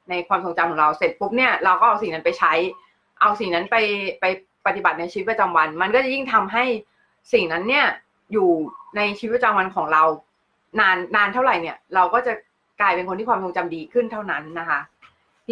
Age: 20-39